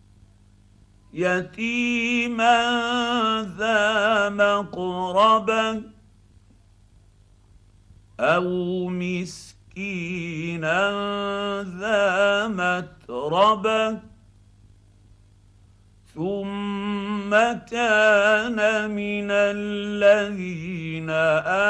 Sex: male